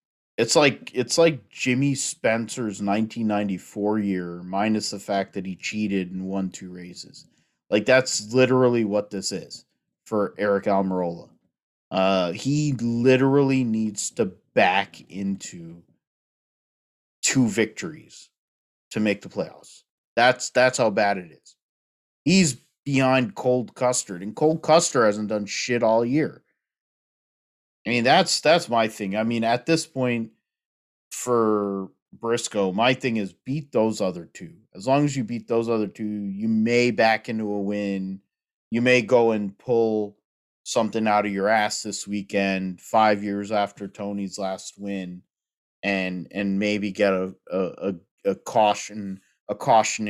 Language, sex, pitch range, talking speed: English, male, 95-115 Hz, 145 wpm